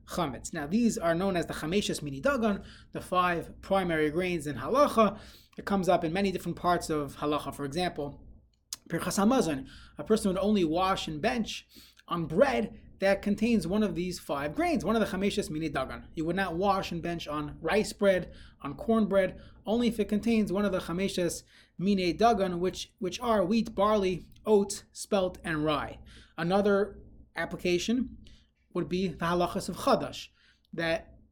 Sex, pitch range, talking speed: male, 165-210 Hz, 170 wpm